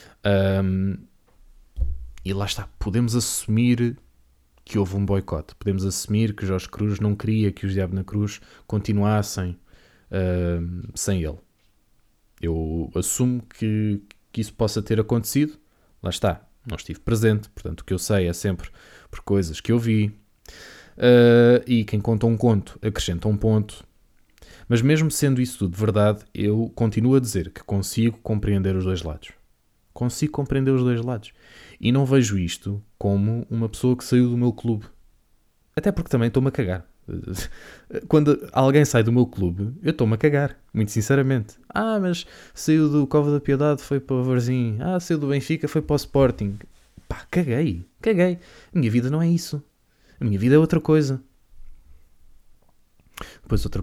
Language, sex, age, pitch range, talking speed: Portuguese, male, 20-39, 95-125 Hz, 165 wpm